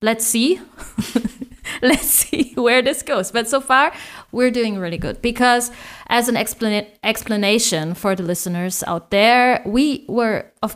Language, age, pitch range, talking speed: German, 20-39, 200-245 Hz, 150 wpm